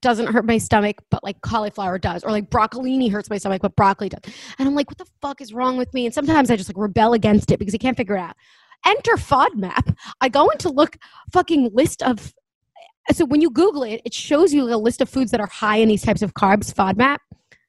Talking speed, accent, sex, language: 240 wpm, American, female, English